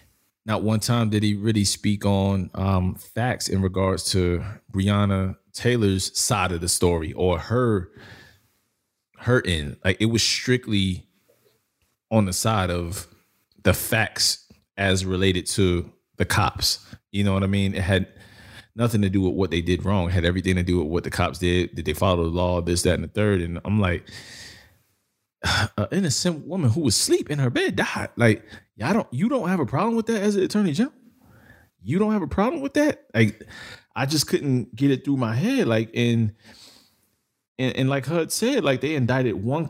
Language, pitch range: English, 95-135 Hz